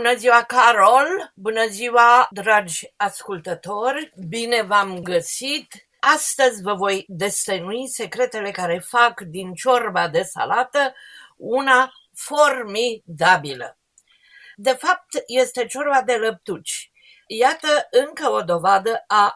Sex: female